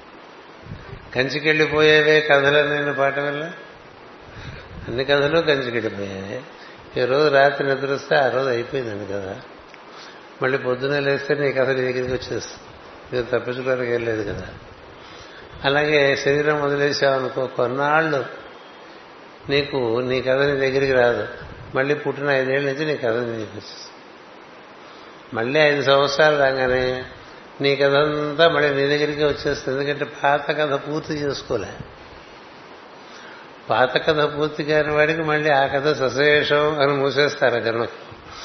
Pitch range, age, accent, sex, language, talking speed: 130-150 Hz, 60-79, native, male, Telugu, 110 wpm